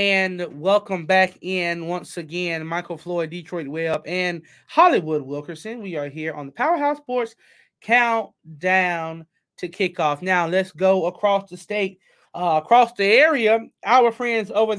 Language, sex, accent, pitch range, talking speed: English, male, American, 185-230 Hz, 145 wpm